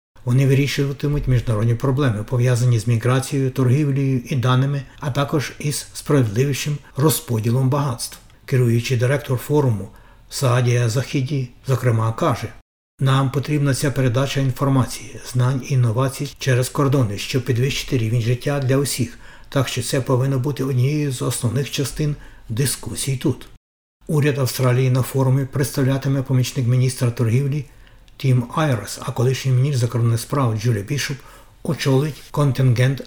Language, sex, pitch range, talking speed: Ukrainian, male, 120-140 Hz, 125 wpm